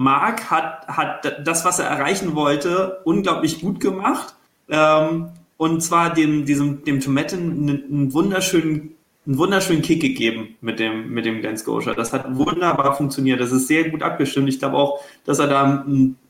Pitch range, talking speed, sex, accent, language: 135-165 Hz, 160 wpm, male, German, German